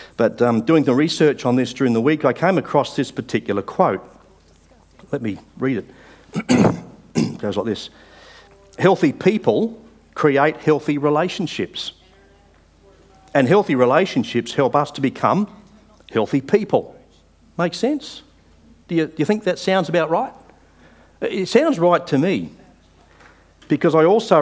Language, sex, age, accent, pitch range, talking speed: English, male, 50-69, Australian, 120-175 Hz, 140 wpm